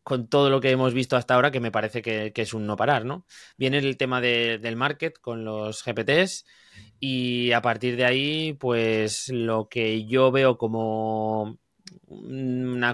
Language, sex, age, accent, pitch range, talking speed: English, male, 20-39, Spanish, 110-130 Hz, 180 wpm